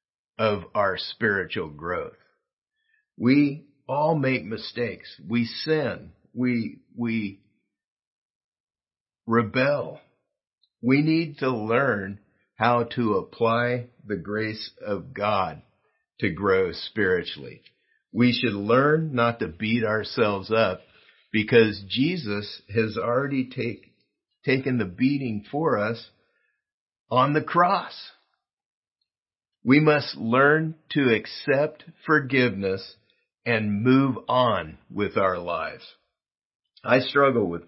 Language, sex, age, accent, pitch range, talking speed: English, male, 50-69, American, 105-135 Hz, 100 wpm